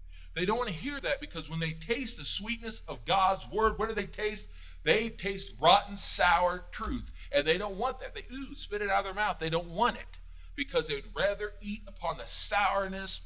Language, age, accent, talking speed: English, 40-59, American, 215 wpm